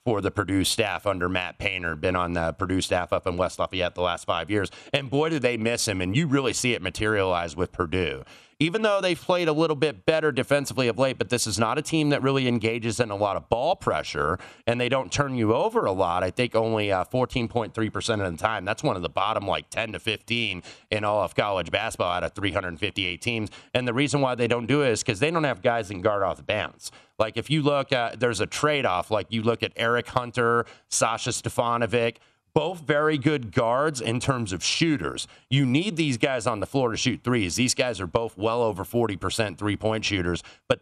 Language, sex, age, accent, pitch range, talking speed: English, male, 30-49, American, 100-130 Hz, 230 wpm